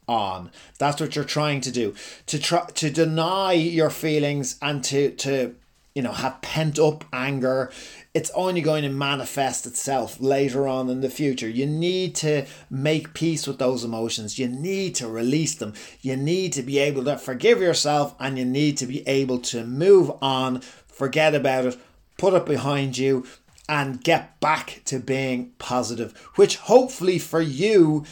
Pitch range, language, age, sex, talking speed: 130-160 Hz, English, 30-49, male, 170 wpm